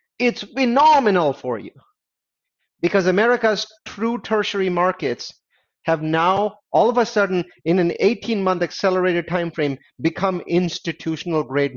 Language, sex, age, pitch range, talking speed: English, male, 30-49, 140-205 Hz, 120 wpm